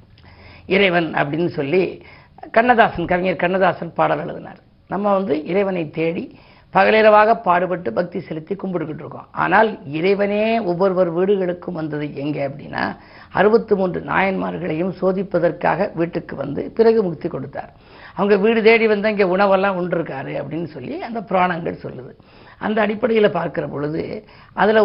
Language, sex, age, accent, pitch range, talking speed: Tamil, female, 50-69, native, 165-205 Hz, 125 wpm